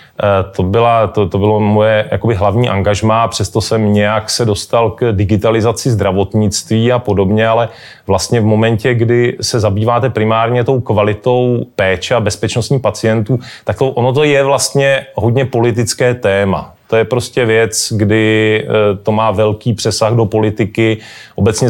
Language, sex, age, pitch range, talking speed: Czech, male, 30-49, 100-115 Hz, 140 wpm